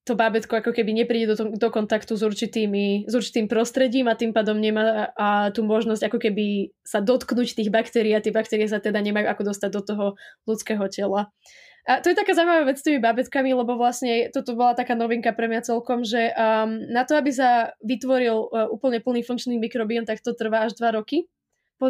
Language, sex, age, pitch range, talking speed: Slovak, female, 20-39, 215-245 Hz, 210 wpm